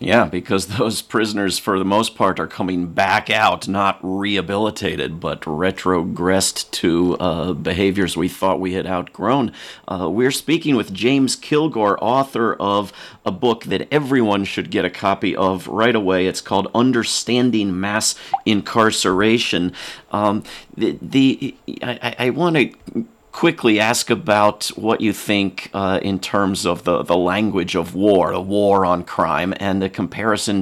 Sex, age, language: male, 40-59, English